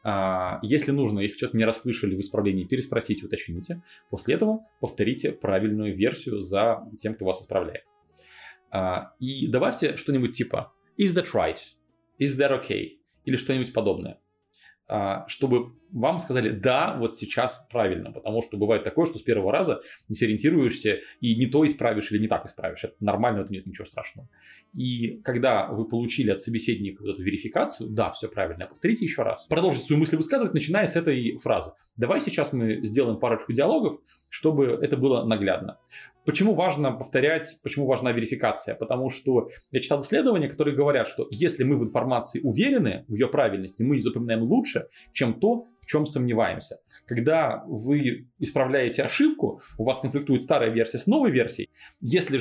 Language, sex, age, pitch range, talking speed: Russian, male, 30-49, 110-145 Hz, 165 wpm